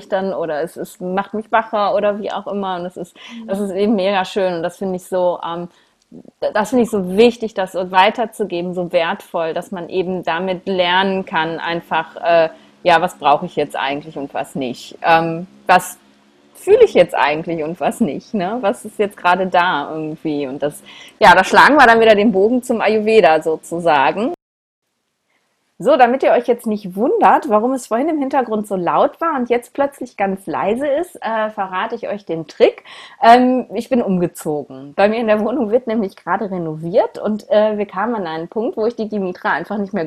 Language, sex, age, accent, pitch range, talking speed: German, female, 30-49, German, 175-225 Hz, 200 wpm